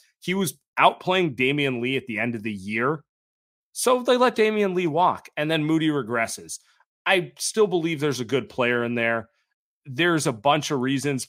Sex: male